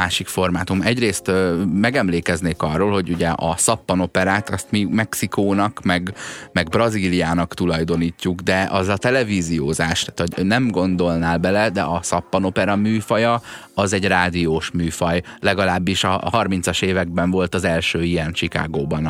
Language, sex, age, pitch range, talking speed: Hungarian, male, 30-49, 85-100 Hz, 135 wpm